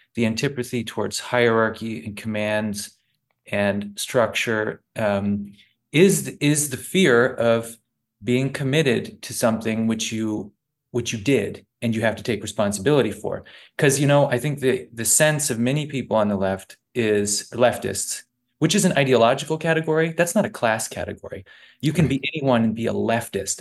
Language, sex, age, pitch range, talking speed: English, male, 30-49, 110-135 Hz, 160 wpm